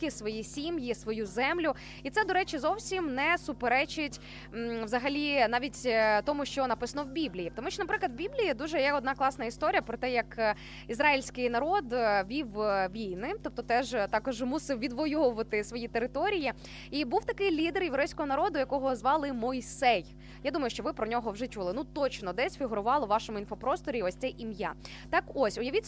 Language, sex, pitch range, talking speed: Ukrainian, female, 235-330 Hz, 170 wpm